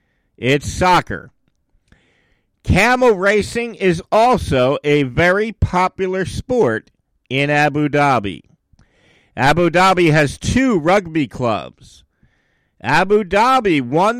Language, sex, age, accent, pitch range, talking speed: English, male, 50-69, American, 140-205 Hz, 95 wpm